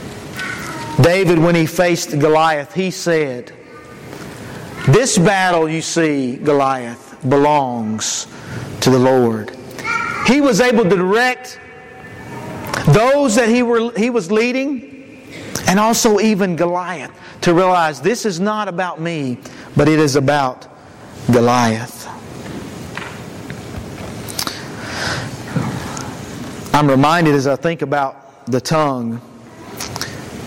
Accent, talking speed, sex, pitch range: American, 100 wpm, male, 150-230 Hz